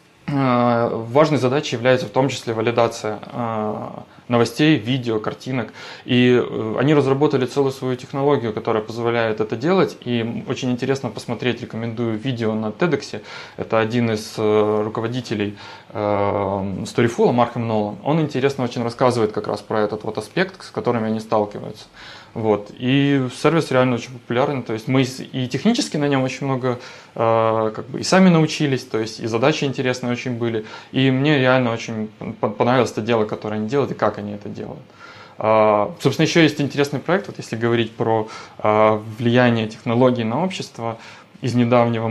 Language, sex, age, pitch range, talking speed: Ukrainian, male, 20-39, 110-130 Hz, 150 wpm